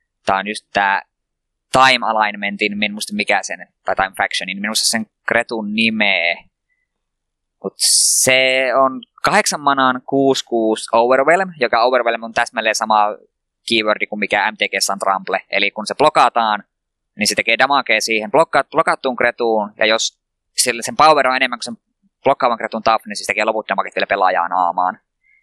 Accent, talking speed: native, 155 wpm